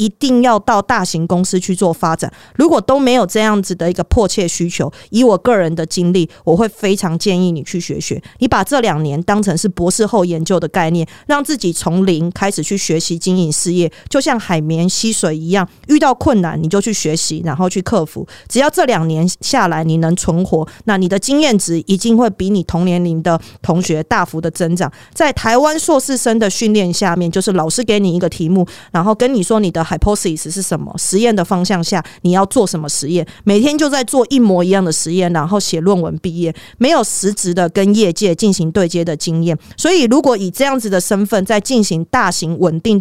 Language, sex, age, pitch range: Chinese, female, 30-49, 170-220 Hz